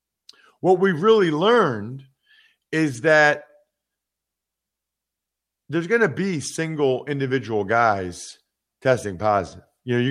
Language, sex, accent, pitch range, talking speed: English, male, American, 115-155 Hz, 105 wpm